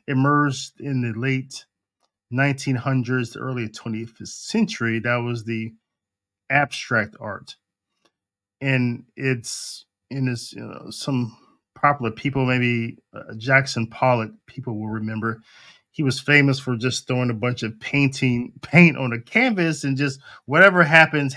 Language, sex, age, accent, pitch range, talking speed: English, male, 20-39, American, 115-155 Hz, 125 wpm